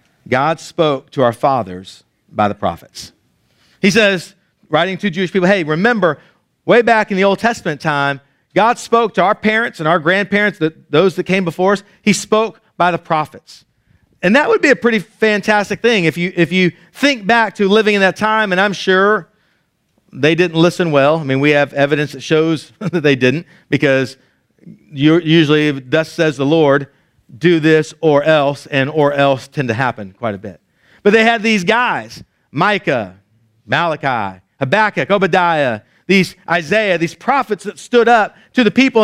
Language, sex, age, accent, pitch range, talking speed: English, male, 40-59, American, 150-210 Hz, 180 wpm